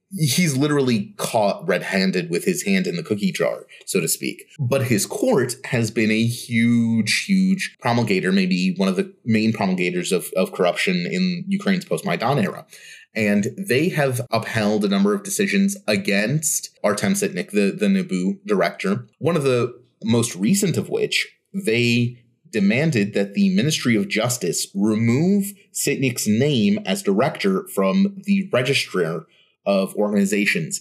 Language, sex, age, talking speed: English, male, 30-49, 145 wpm